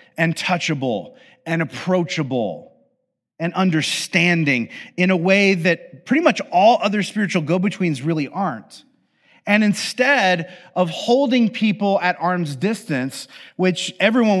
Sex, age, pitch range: male, 30-49, 120-180 Hz